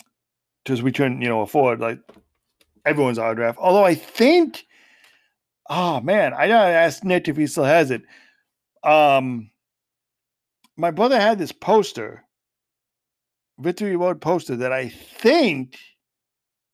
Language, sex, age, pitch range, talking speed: English, male, 50-69, 125-170 Hz, 125 wpm